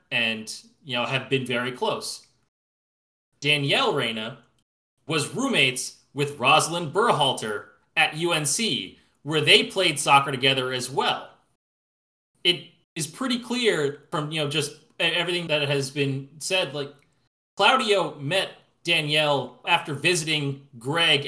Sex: male